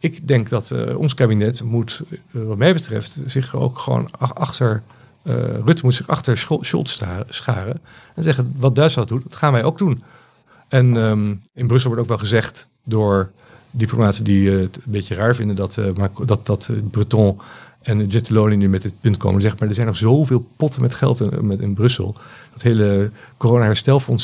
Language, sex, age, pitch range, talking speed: Dutch, male, 50-69, 105-130 Hz, 190 wpm